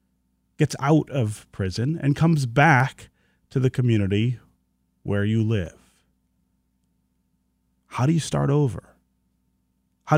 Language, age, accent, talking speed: English, 30-49, American, 110 wpm